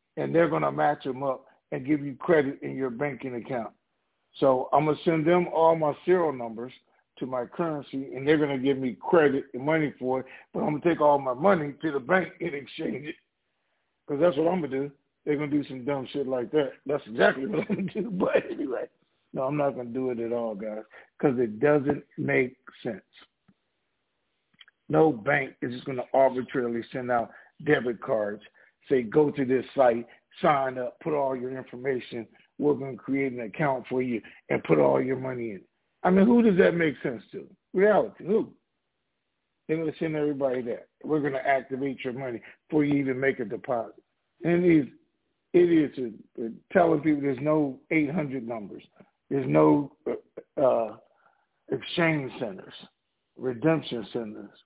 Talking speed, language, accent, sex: 190 wpm, English, American, male